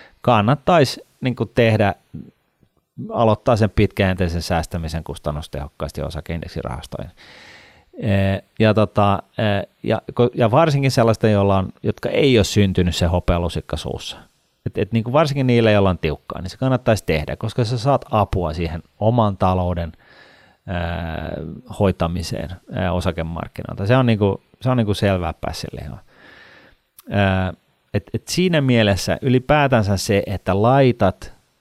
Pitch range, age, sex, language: 90-110 Hz, 30-49, male, Finnish